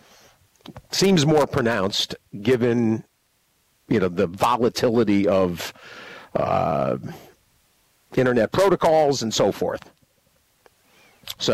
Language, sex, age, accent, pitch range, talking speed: English, male, 50-69, American, 95-135 Hz, 85 wpm